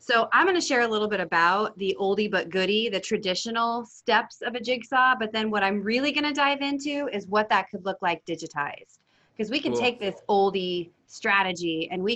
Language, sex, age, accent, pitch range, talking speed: English, female, 30-49, American, 175-235 Hz, 215 wpm